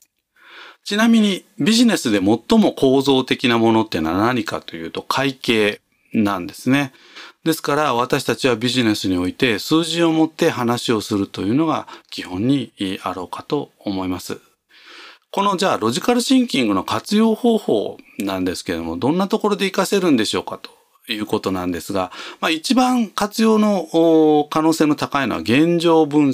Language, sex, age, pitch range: Japanese, male, 40-59, 105-170 Hz